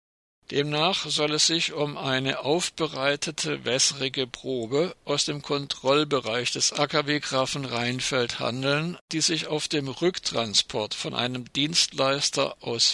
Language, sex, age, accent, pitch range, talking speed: German, male, 60-79, German, 125-150 Hz, 115 wpm